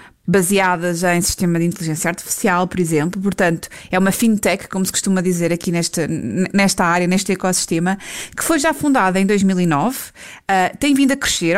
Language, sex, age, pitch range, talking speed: Portuguese, female, 20-39, 175-220 Hz, 160 wpm